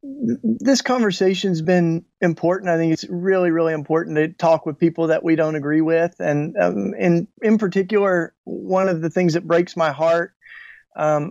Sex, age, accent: male, 40-59, American